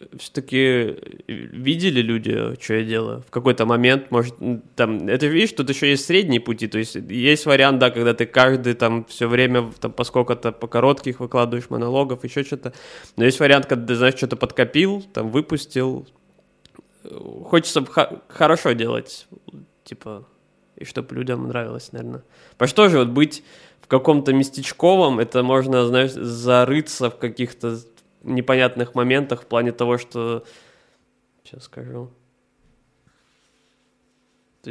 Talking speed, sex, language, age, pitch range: 140 wpm, male, Russian, 20-39, 120-135 Hz